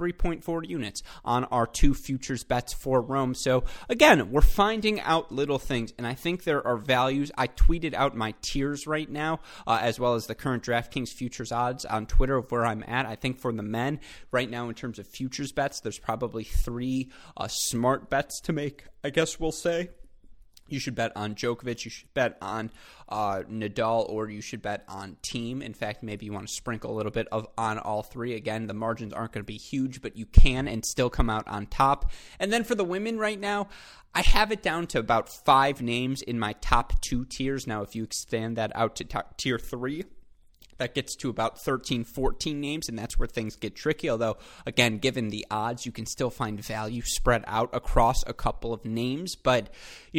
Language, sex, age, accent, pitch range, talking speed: English, male, 20-39, American, 110-135 Hz, 210 wpm